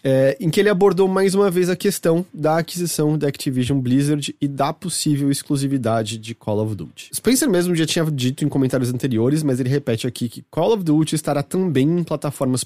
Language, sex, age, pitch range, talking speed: English, male, 20-39, 120-170 Hz, 200 wpm